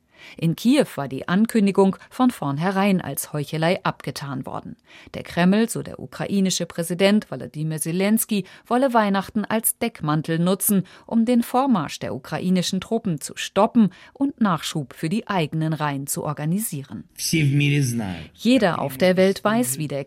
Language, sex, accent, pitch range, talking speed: German, female, German, 150-205 Hz, 140 wpm